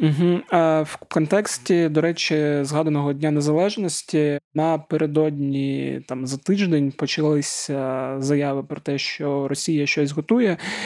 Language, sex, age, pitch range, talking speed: Ukrainian, male, 20-39, 145-160 Hz, 110 wpm